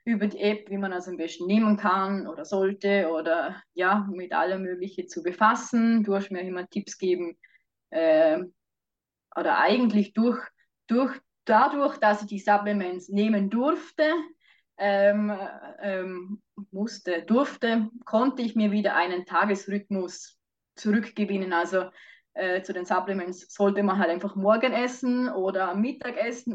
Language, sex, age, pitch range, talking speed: German, female, 20-39, 185-225 Hz, 140 wpm